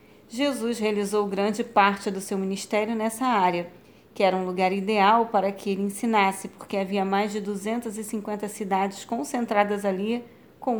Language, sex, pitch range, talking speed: Portuguese, female, 195-225 Hz, 150 wpm